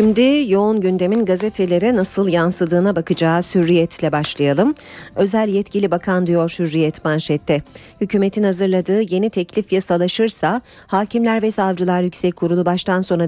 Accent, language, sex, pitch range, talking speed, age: native, Turkish, female, 165-200 Hz, 120 wpm, 40-59